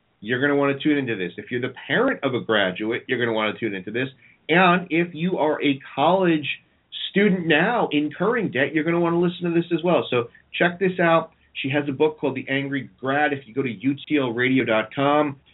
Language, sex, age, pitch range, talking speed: English, male, 40-59, 110-145 Hz, 230 wpm